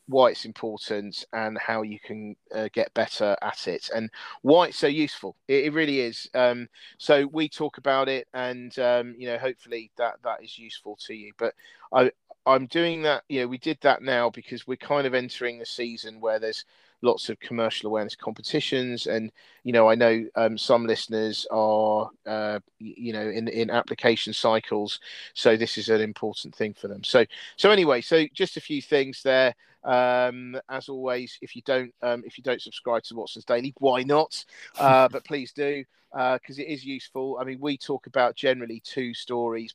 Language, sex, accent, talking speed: English, male, British, 195 wpm